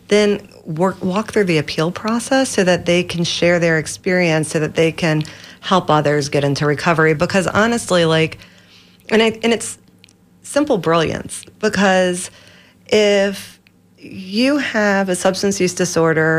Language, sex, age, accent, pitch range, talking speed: English, female, 40-59, American, 160-190 Hz, 145 wpm